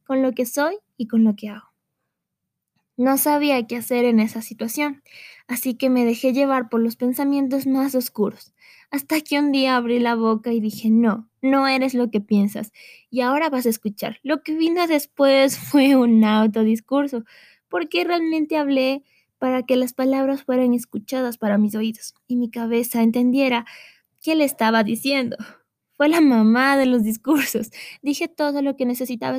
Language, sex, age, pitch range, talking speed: Spanish, female, 20-39, 225-275 Hz, 170 wpm